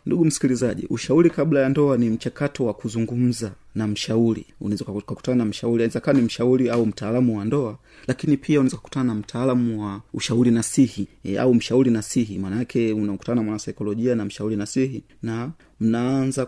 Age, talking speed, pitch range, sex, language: 30-49, 170 wpm, 110-130 Hz, male, Swahili